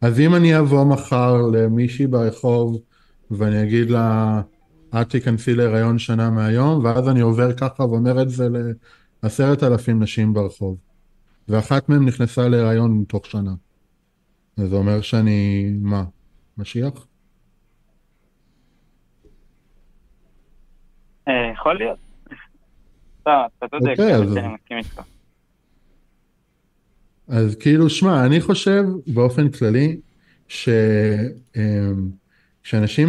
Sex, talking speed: male, 100 wpm